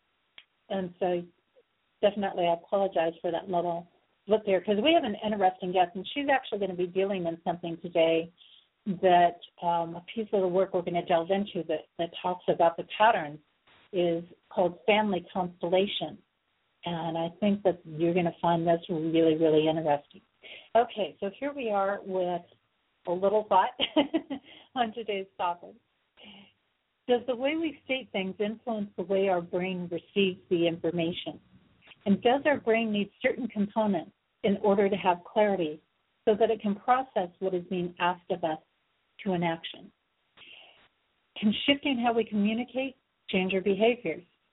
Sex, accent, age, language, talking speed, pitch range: female, American, 50-69, English, 160 wpm, 175-215 Hz